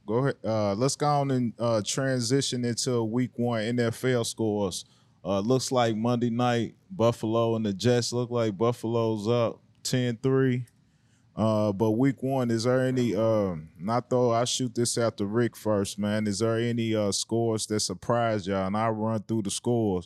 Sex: male